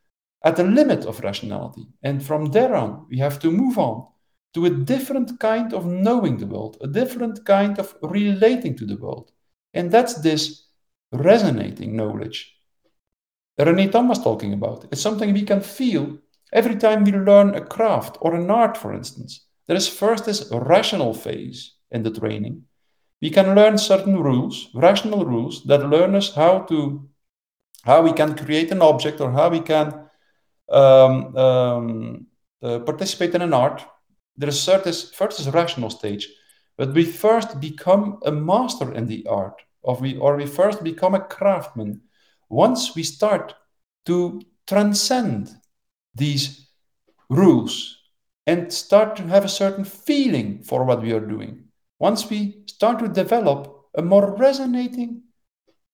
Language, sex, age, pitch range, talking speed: English, male, 50-69, 140-205 Hz, 160 wpm